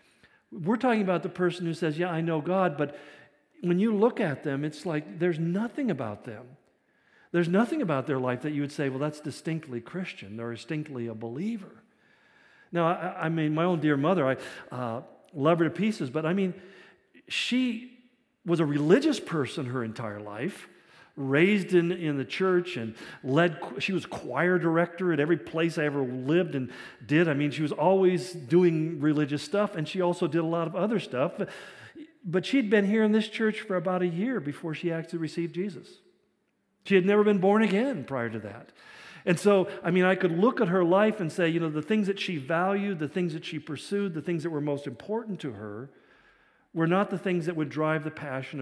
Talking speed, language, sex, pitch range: 205 wpm, English, male, 145-190 Hz